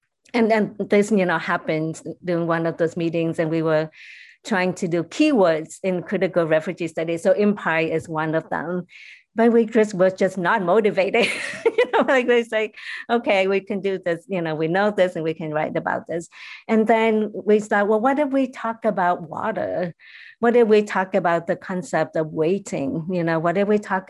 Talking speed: 205 wpm